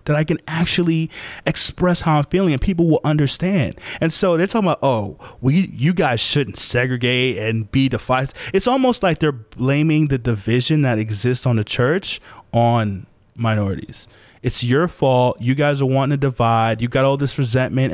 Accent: American